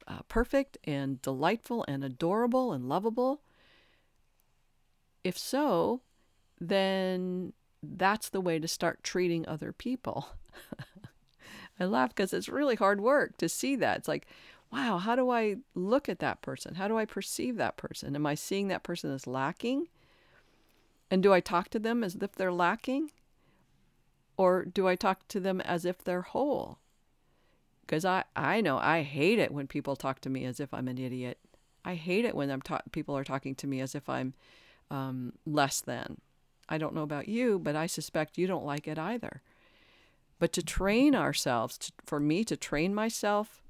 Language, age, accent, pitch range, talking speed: English, 50-69, American, 145-195 Hz, 175 wpm